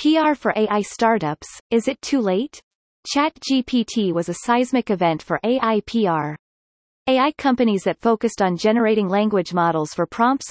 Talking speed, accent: 150 wpm, American